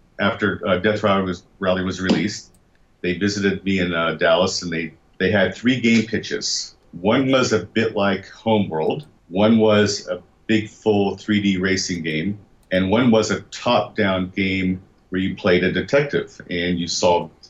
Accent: American